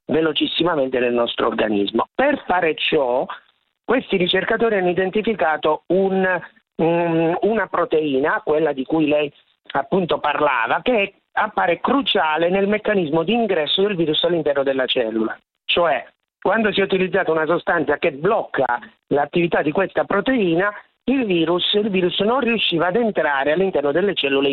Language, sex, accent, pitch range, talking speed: Italian, male, native, 145-190 Hz, 130 wpm